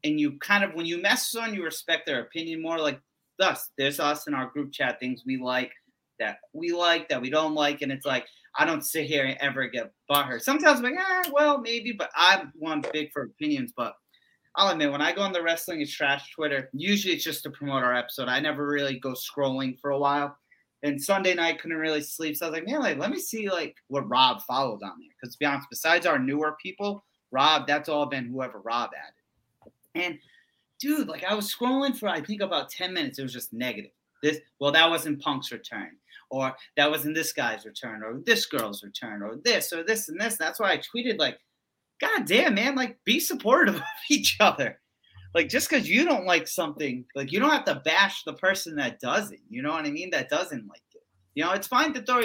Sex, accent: male, American